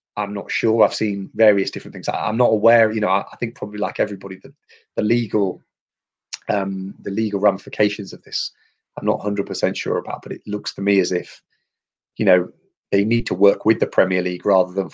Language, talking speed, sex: English, 215 wpm, male